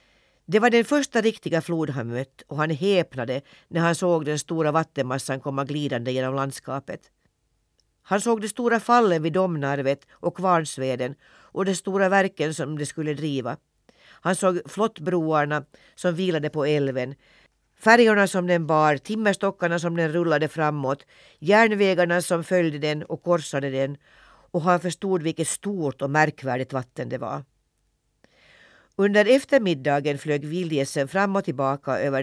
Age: 50-69